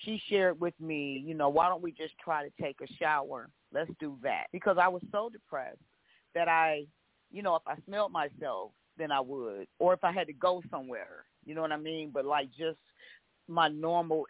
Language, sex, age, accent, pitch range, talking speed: English, female, 40-59, American, 150-185 Hz, 215 wpm